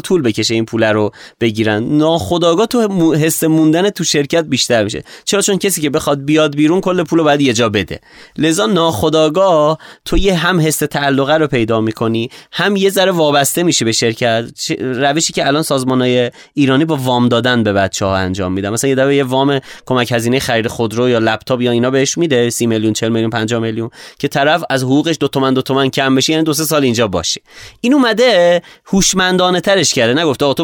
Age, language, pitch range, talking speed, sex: 30-49, Persian, 120-160 Hz, 195 wpm, male